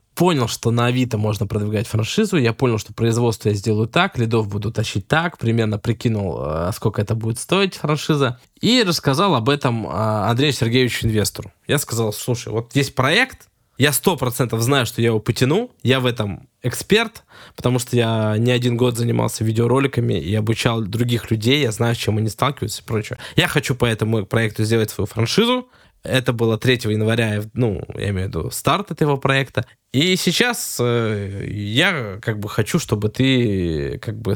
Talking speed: 175 wpm